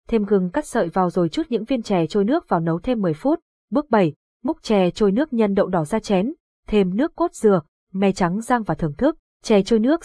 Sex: female